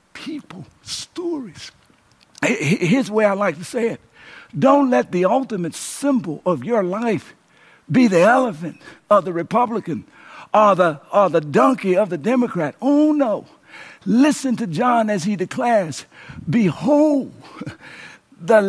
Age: 60-79